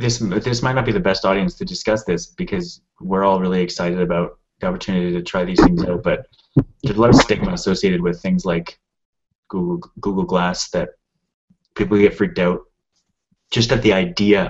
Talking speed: 190 wpm